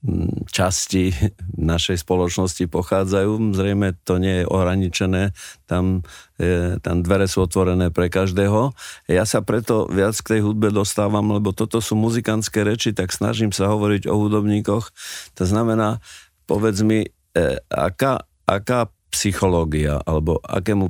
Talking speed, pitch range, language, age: 130 wpm, 90-105 Hz, Slovak, 50-69